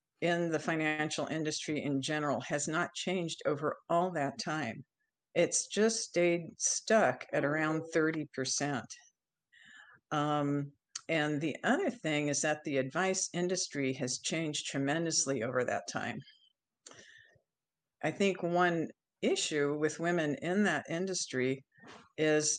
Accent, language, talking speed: American, English, 120 wpm